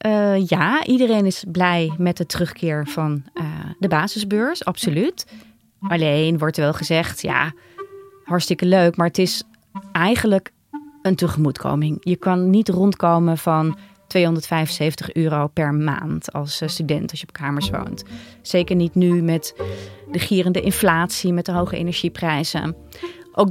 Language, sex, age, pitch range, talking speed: Dutch, female, 30-49, 160-195 Hz, 140 wpm